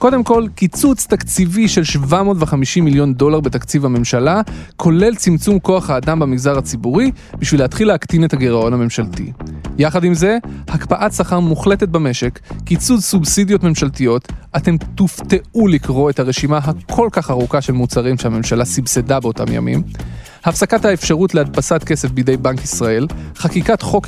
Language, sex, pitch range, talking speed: Hebrew, male, 125-185 Hz, 135 wpm